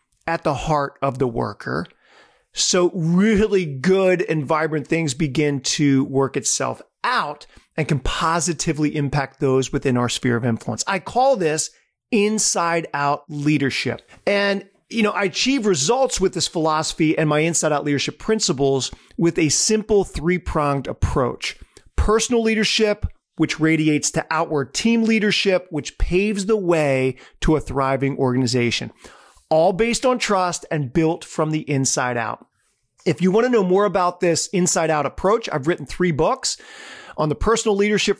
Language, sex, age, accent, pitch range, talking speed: English, male, 40-59, American, 145-195 Hz, 150 wpm